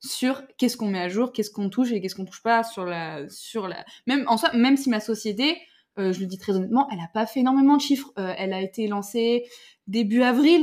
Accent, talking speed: French, 255 wpm